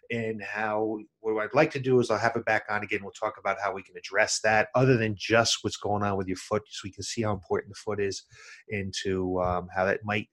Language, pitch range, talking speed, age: English, 105-140 Hz, 260 wpm, 30-49